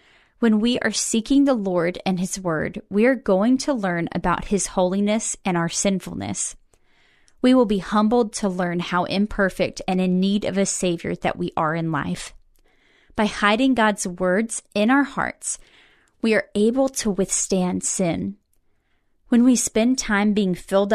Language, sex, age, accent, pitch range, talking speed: English, female, 30-49, American, 180-225 Hz, 165 wpm